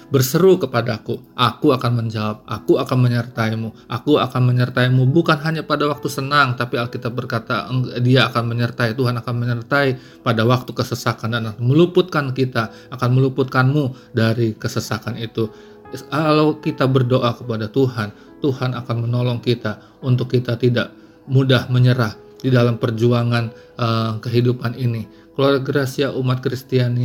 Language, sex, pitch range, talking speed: Indonesian, male, 115-135 Hz, 130 wpm